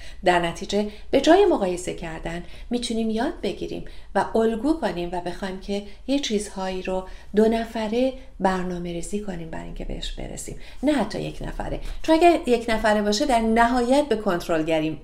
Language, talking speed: Persian, 160 wpm